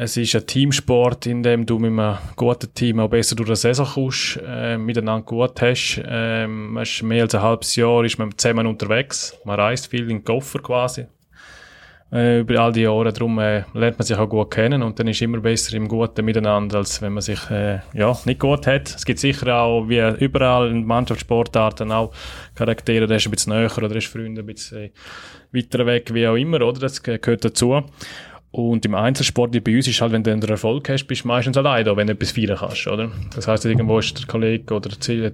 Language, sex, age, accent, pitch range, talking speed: German, male, 20-39, Austrian, 110-125 Hz, 220 wpm